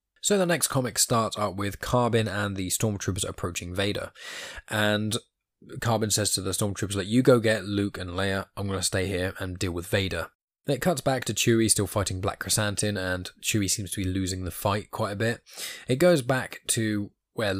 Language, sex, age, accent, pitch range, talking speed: English, male, 10-29, British, 95-110 Hz, 205 wpm